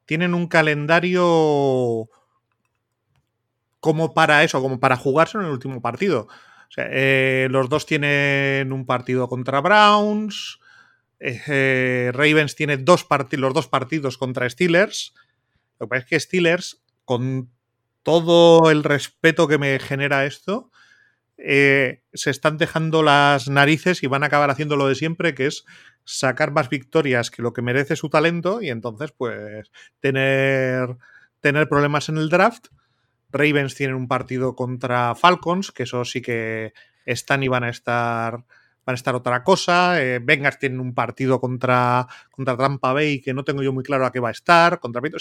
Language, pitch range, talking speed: Spanish, 125-160 Hz, 165 wpm